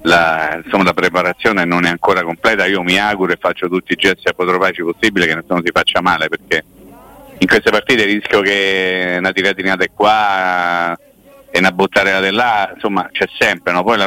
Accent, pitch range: native, 90-105 Hz